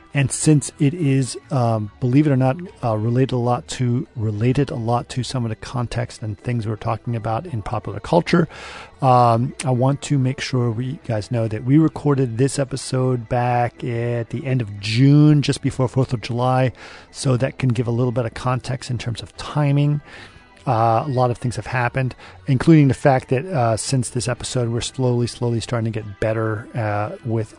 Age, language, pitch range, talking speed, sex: 40-59, English, 110-130 Hz, 200 wpm, male